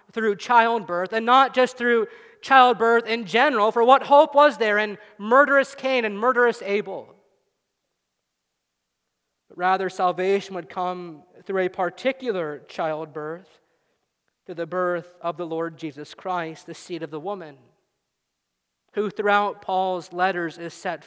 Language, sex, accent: English, male, American